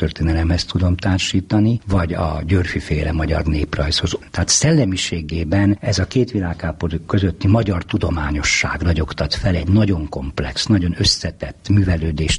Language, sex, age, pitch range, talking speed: Hungarian, male, 60-79, 75-95 Hz, 120 wpm